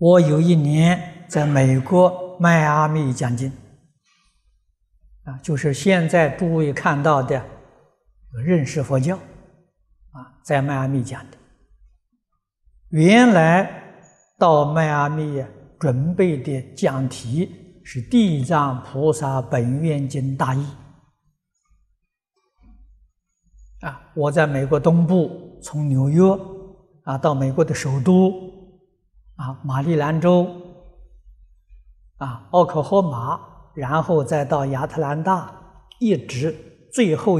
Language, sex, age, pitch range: Chinese, male, 60-79, 135-180 Hz